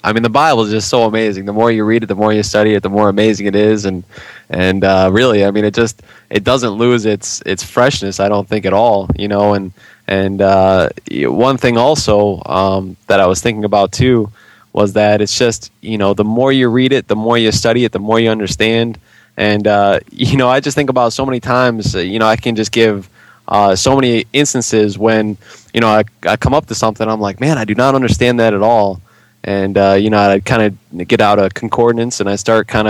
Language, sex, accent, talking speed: English, male, American, 240 wpm